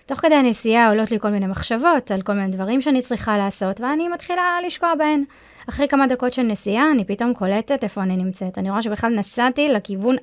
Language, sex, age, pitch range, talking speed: Hebrew, female, 20-39, 195-275 Hz, 205 wpm